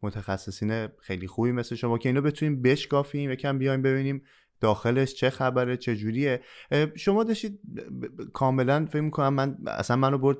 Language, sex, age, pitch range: Persian, male, 20-39, 100-135 Hz